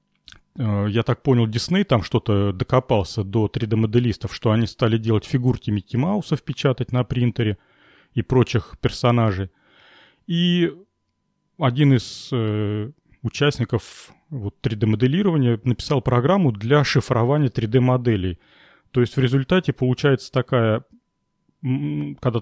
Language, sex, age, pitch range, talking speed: Russian, male, 40-59, 110-140 Hz, 110 wpm